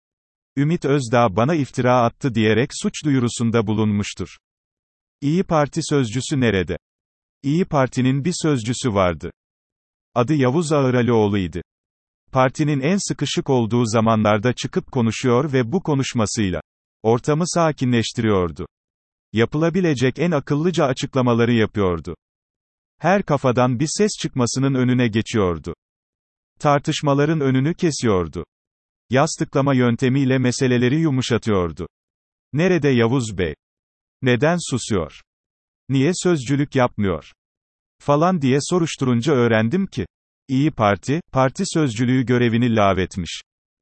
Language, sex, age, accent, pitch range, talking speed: Turkish, male, 40-59, native, 110-145 Hz, 95 wpm